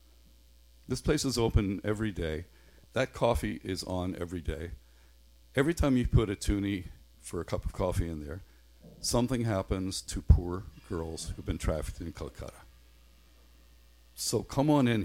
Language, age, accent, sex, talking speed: English, 50-69, American, male, 155 wpm